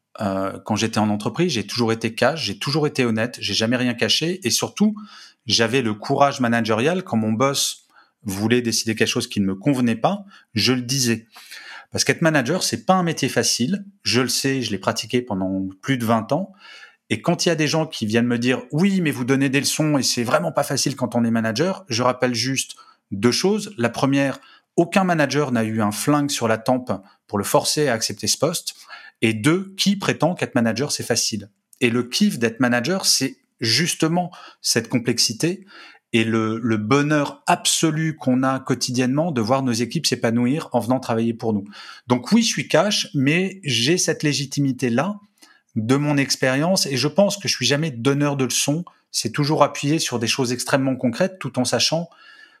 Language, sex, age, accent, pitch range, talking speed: French, male, 30-49, French, 115-155 Hz, 195 wpm